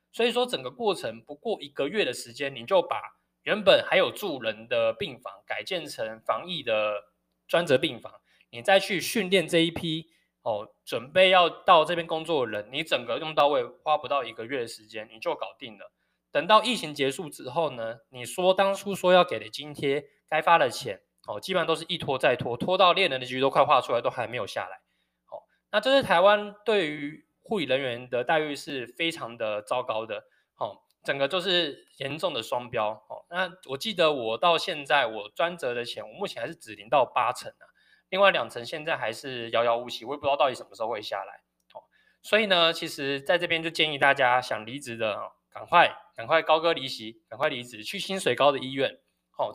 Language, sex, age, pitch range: Chinese, male, 20-39, 120-180 Hz